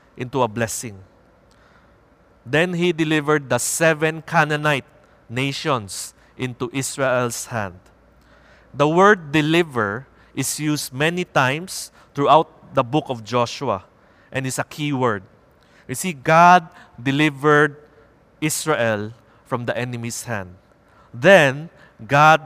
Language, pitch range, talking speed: English, 110-150 Hz, 110 wpm